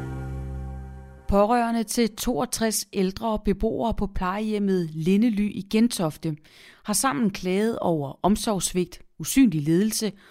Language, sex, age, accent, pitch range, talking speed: Danish, female, 30-49, native, 170-225 Hz, 100 wpm